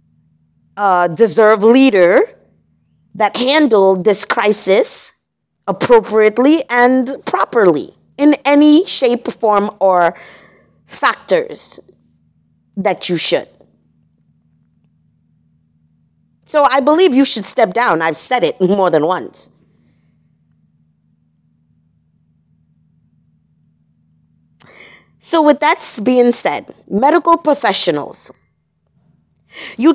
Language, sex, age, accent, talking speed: English, female, 30-49, American, 80 wpm